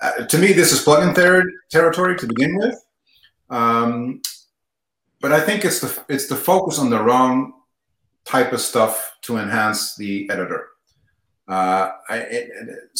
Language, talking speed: English, 155 wpm